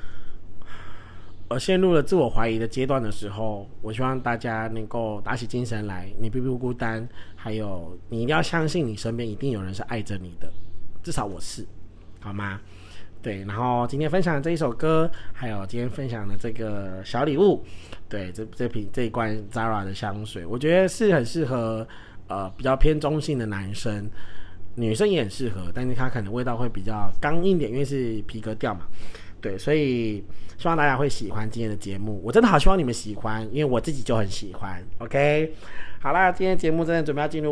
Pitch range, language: 105-145 Hz, Chinese